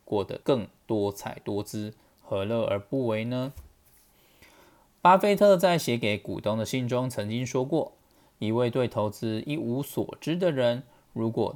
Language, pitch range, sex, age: Chinese, 105-130 Hz, male, 20-39